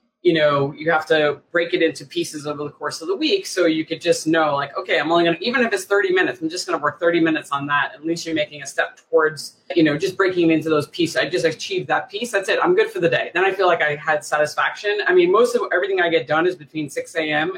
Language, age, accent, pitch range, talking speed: English, 20-39, American, 150-190 Hz, 285 wpm